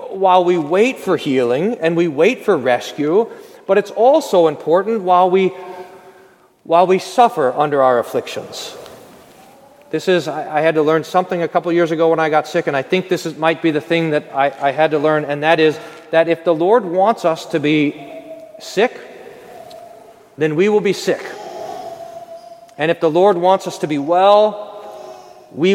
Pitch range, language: 165-230 Hz, English